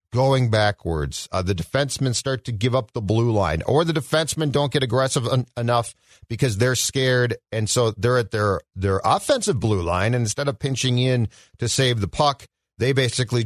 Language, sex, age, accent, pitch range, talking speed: English, male, 40-59, American, 115-165 Hz, 185 wpm